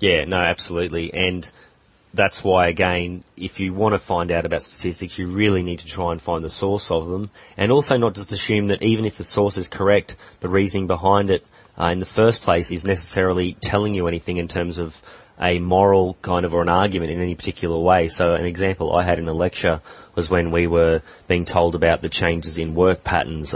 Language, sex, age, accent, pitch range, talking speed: English, male, 30-49, Australian, 85-95 Hz, 220 wpm